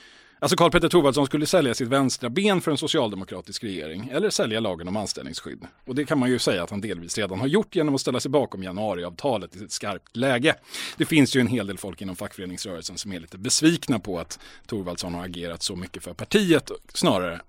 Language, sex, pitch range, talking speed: Swedish, male, 95-150 Hz, 215 wpm